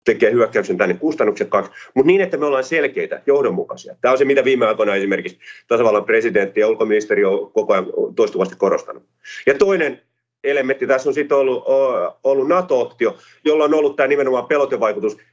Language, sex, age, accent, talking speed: Finnish, male, 30-49, native, 170 wpm